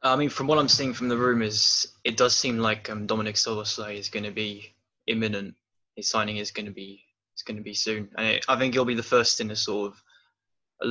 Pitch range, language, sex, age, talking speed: 105-115 Hz, English, male, 10-29, 250 wpm